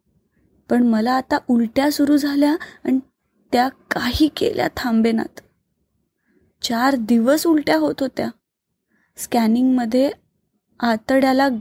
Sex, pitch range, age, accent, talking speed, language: female, 225-265 Hz, 20-39, native, 100 wpm, Marathi